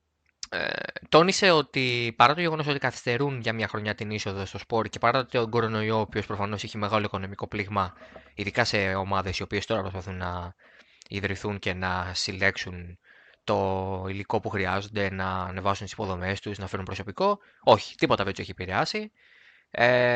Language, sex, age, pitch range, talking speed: Greek, male, 20-39, 100-130 Hz, 175 wpm